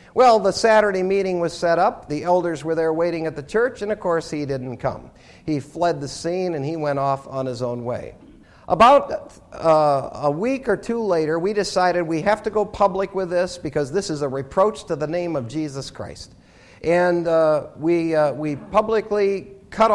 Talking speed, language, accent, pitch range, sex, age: 200 wpm, English, American, 160-205 Hz, male, 50-69